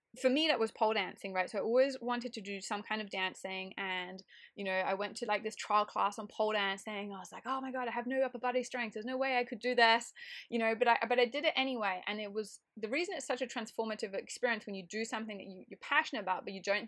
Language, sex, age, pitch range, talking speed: English, female, 20-39, 195-245 Hz, 285 wpm